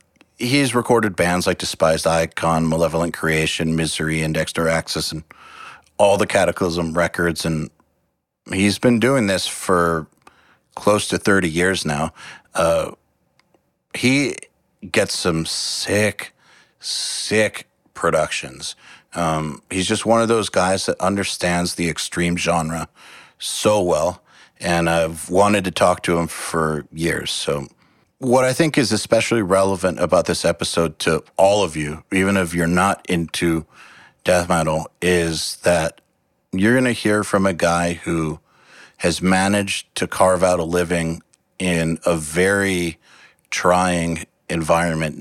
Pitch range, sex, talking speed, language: 80-100 Hz, male, 135 wpm, English